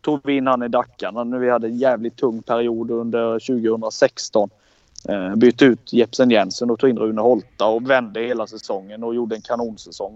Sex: male